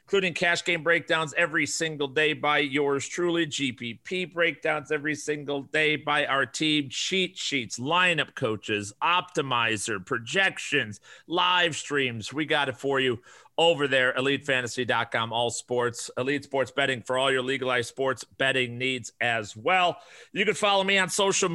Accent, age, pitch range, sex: American, 40-59, 120-165 Hz, male